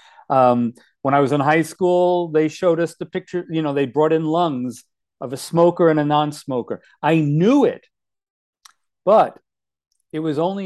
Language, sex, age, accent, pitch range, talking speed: English, male, 40-59, American, 135-175 Hz, 175 wpm